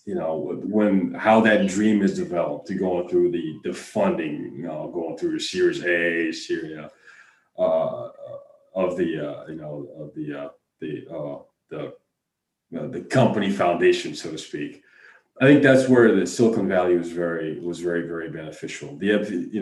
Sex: male